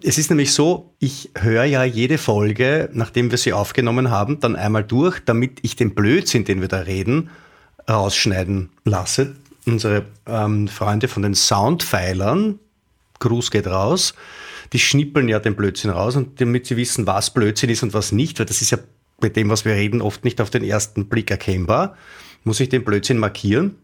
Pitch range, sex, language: 105-140 Hz, male, German